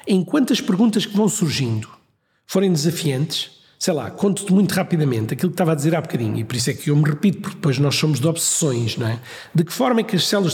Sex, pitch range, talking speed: male, 145-190 Hz, 245 wpm